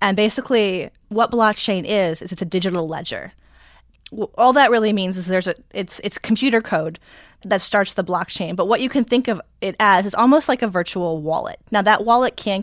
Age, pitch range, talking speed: 20-39, 175-215 Hz, 205 wpm